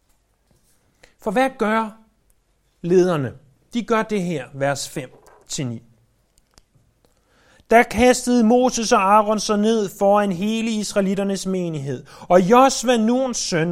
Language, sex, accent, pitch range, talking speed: Danish, male, native, 140-225 Hz, 105 wpm